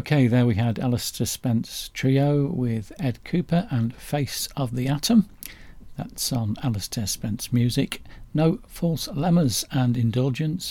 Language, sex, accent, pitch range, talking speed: English, male, British, 110-150 Hz, 140 wpm